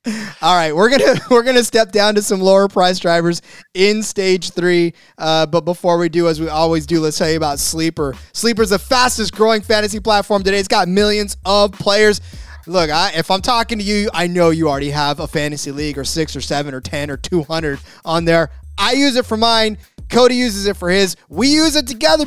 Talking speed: 225 wpm